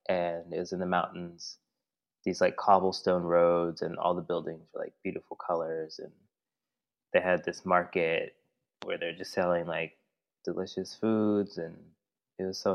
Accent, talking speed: American, 160 wpm